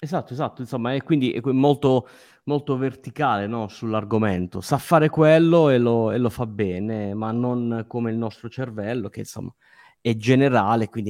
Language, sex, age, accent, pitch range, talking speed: Italian, male, 30-49, native, 110-145 Hz, 160 wpm